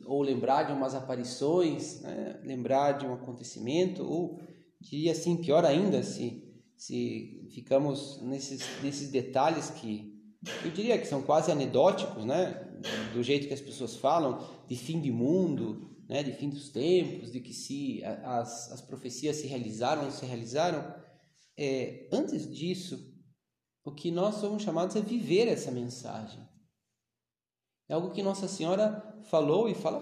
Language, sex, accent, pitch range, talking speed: Portuguese, male, Brazilian, 130-180 Hz, 150 wpm